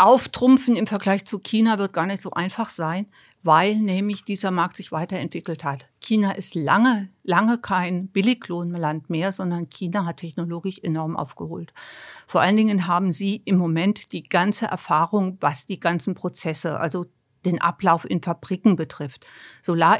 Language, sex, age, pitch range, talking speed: German, female, 50-69, 170-205 Hz, 155 wpm